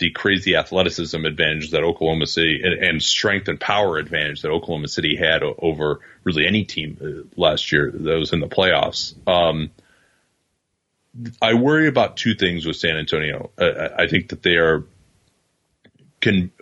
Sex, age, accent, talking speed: male, 30-49, American, 160 wpm